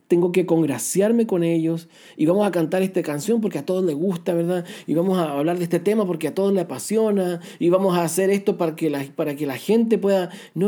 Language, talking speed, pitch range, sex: Spanish, 240 wpm, 155-195 Hz, male